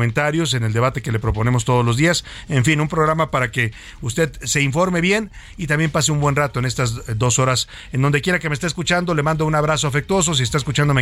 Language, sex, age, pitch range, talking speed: Spanish, male, 50-69, 120-155 Hz, 245 wpm